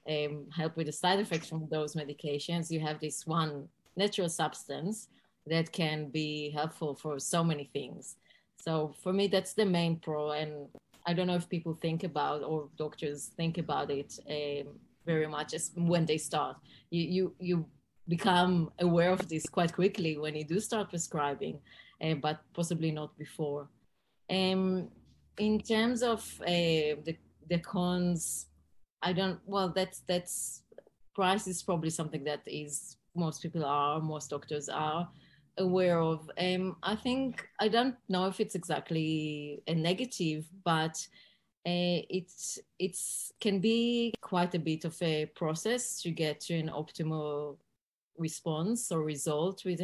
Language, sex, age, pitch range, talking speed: English, female, 20-39, 155-185 Hz, 155 wpm